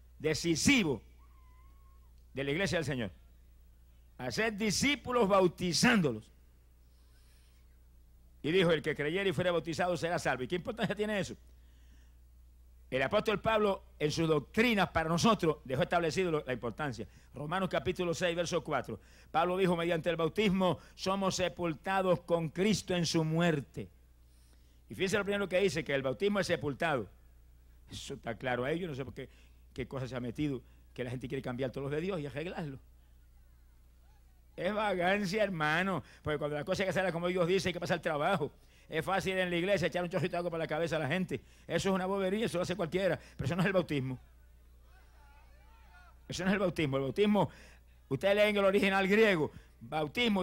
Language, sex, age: Spanish, male, 60-79